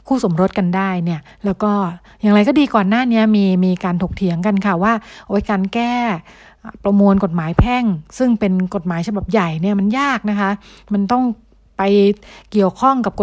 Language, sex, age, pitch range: Thai, female, 60-79, 185-220 Hz